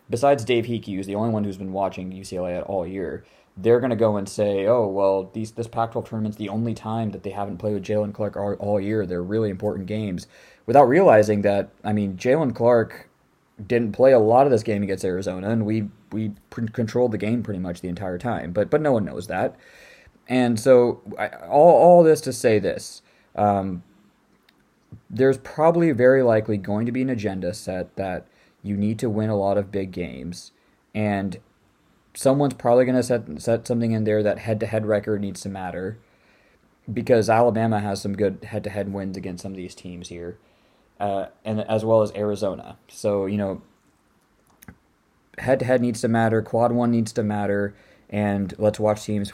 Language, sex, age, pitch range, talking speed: English, male, 20-39, 100-115 Hz, 190 wpm